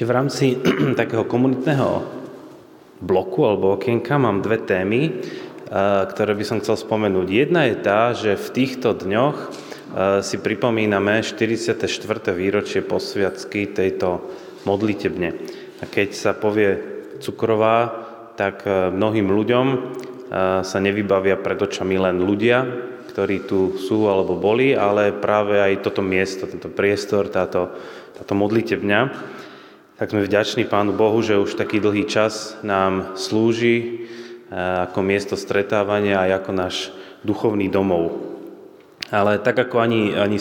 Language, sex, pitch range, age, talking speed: Slovak, male, 100-115 Hz, 20-39, 125 wpm